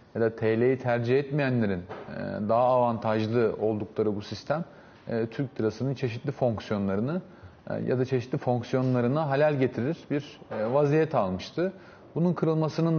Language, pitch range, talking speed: Turkish, 120-150 Hz, 115 wpm